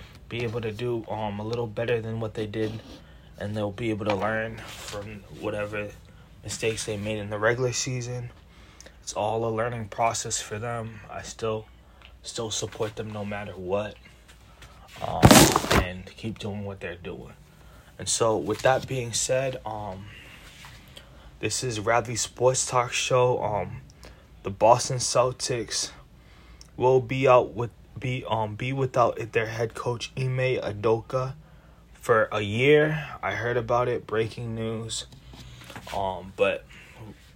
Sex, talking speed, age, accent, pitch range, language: male, 145 wpm, 20-39, American, 105-120 Hz, English